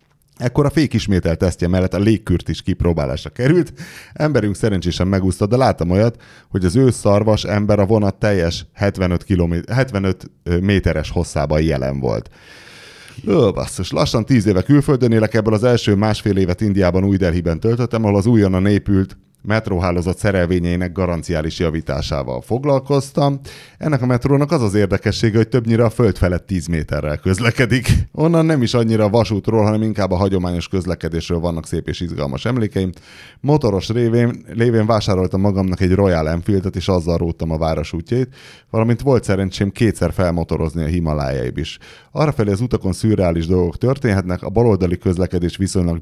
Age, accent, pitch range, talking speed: 30-49, Finnish, 85-115 Hz, 150 wpm